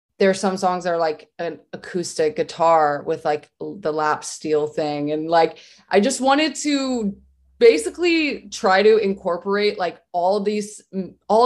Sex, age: female, 20-39